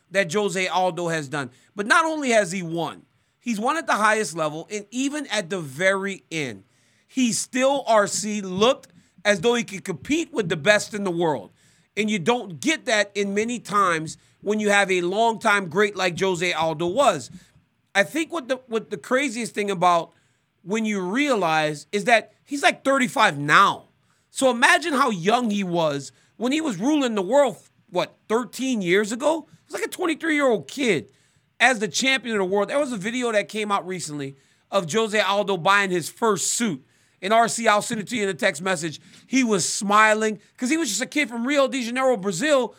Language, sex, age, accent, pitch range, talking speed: English, male, 40-59, American, 185-240 Hz, 200 wpm